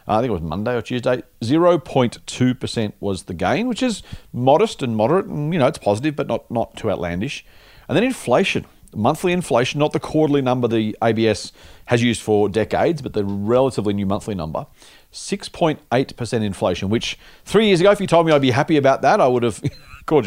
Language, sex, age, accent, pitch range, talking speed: English, male, 40-59, Australian, 110-150 Hz, 195 wpm